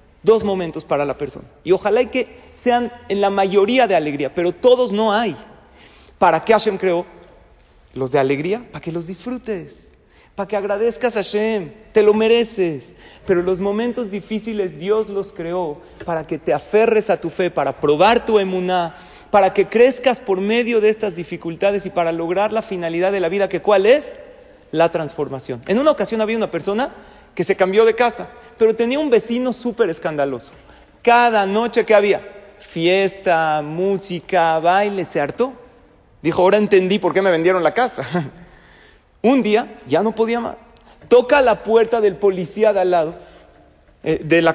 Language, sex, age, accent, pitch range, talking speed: Spanish, male, 40-59, Mexican, 180-230 Hz, 175 wpm